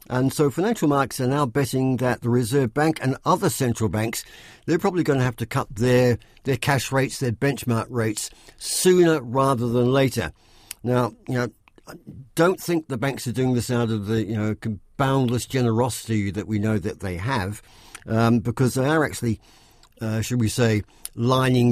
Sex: male